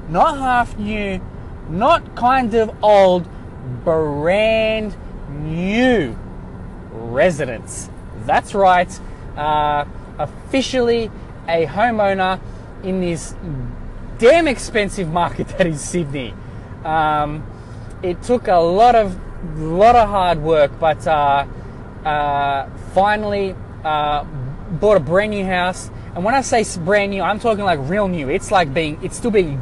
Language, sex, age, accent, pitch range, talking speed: English, male, 20-39, Australian, 145-195 Hz, 125 wpm